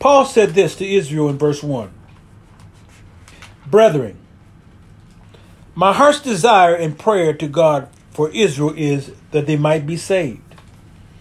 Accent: American